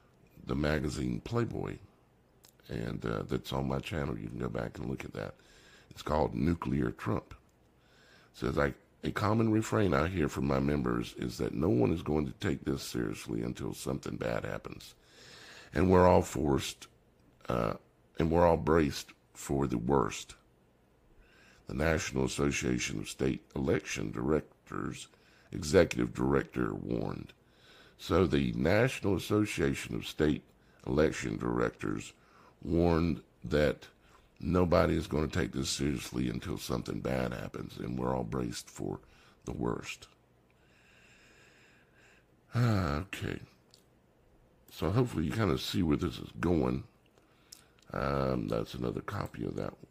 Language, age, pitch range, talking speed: English, 60-79, 65-85 Hz, 135 wpm